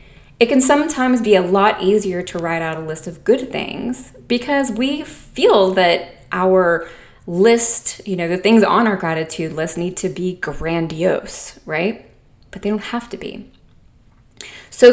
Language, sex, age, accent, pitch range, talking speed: English, female, 20-39, American, 170-220 Hz, 165 wpm